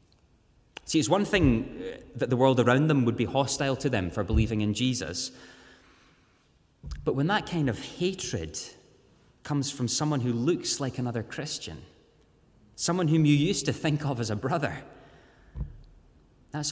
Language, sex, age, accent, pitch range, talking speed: English, male, 30-49, British, 110-140 Hz, 155 wpm